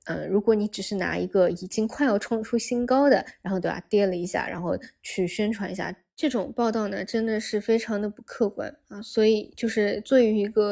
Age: 20-39